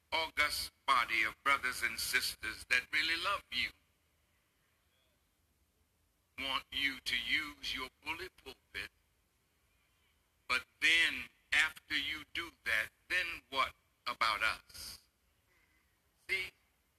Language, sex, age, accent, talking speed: English, male, 60-79, American, 100 wpm